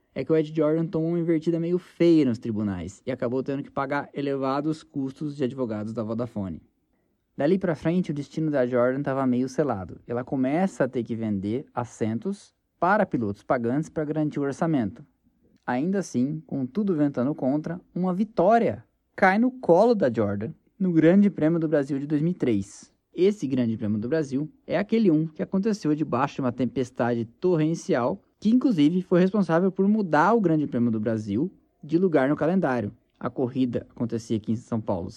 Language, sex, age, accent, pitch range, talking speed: Portuguese, male, 20-39, Brazilian, 125-170 Hz, 175 wpm